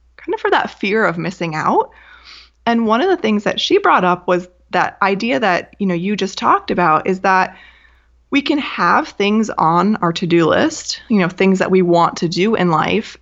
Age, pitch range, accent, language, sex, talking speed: 20-39, 170-205 Hz, American, English, female, 215 wpm